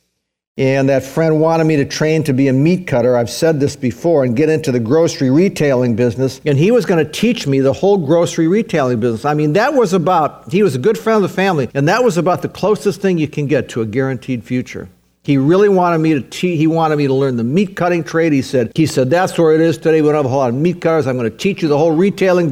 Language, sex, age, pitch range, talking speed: English, male, 50-69, 130-170 Hz, 270 wpm